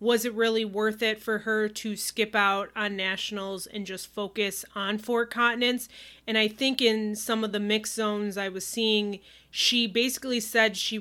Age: 30-49